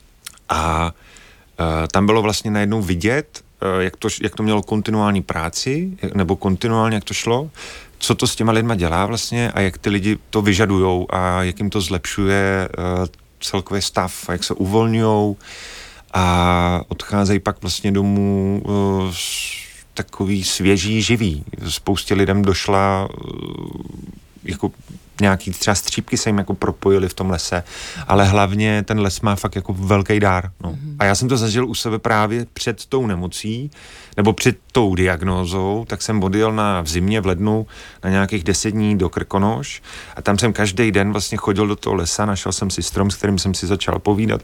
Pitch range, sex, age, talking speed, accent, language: 95-105 Hz, male, 30-49, 175 wpm, native, Czech